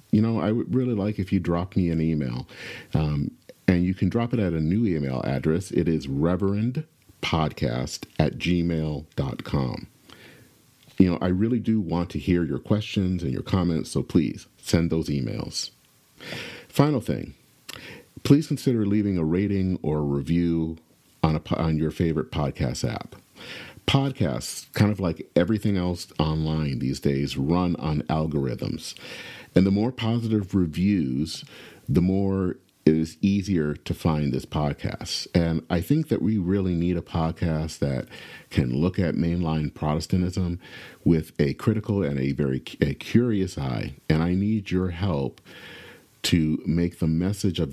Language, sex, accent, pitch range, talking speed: English, male, American, 80-100 Hz, 155 wpm